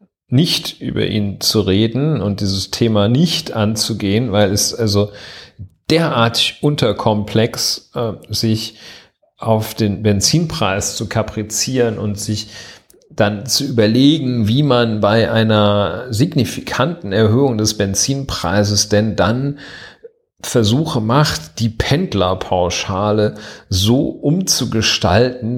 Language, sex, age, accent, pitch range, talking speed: German, male, 40-59, German, 105-130 Hz, 100 wpm